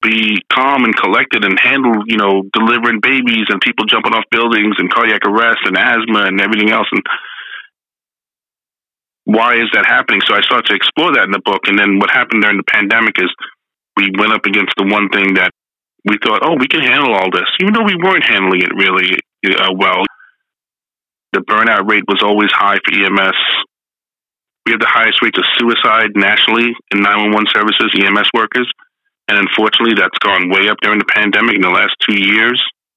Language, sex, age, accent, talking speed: English, male, 30-49, American, 190 wpm